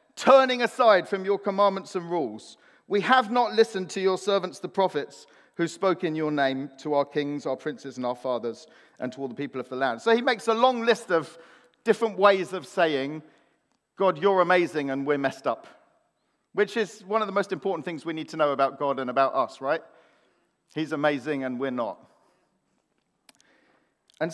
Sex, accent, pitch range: male, British, 160-235 Hz